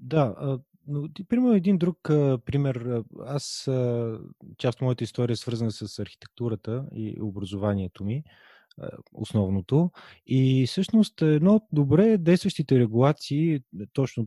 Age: 20-39